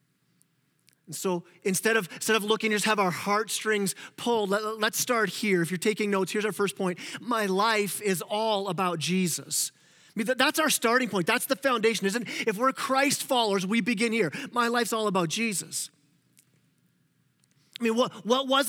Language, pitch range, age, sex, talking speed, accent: English, 200-245 Hz, 30-49, male, 185 wpm, American